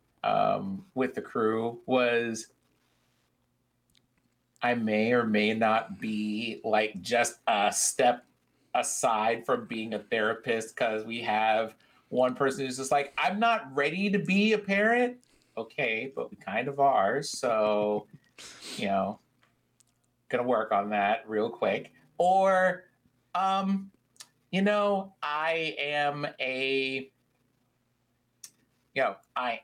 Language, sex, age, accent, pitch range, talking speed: English, male, 30-49, American, 115-160 Hz, 120 wpm